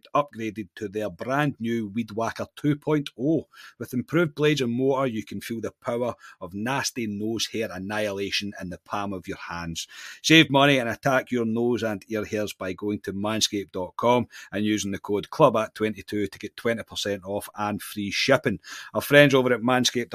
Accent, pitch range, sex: British, 100-120 Hz, male